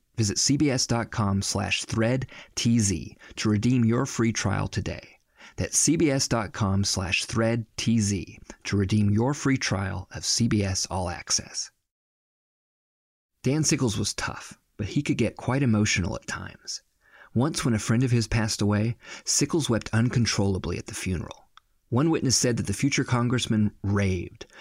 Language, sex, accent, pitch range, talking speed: English, male, American, 100-120 Hz, 140 wpm